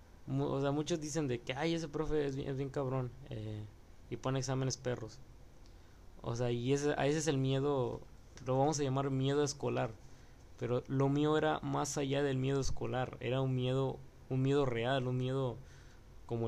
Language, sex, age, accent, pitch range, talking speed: Spanish, male, 20-39, Mexican, 115-140 Hz, 190 wpm